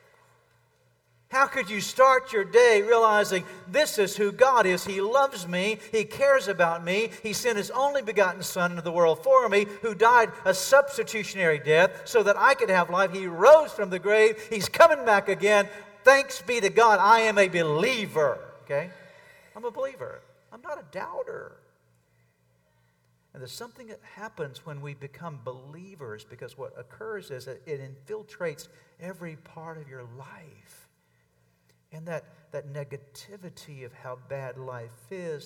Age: 50-69